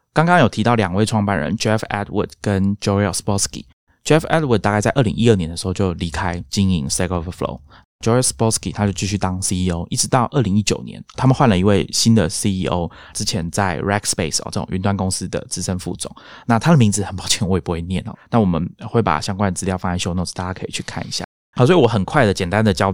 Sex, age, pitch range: male, 20-39, 95-110 Hz